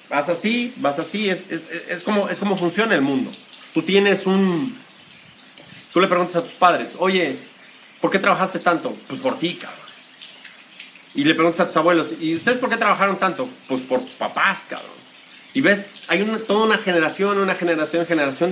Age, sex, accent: 40-59, male, Mexican